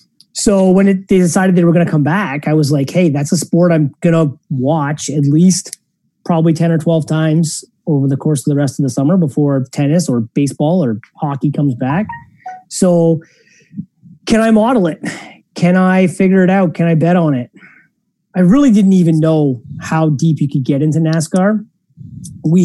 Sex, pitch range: male, 145-190 Hz